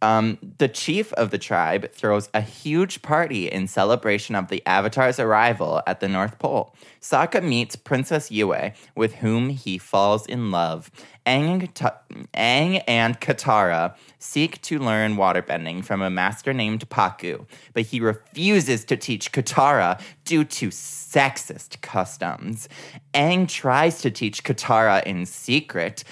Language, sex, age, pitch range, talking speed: English, male, 20-39, 100-140 Hz, 135 wpm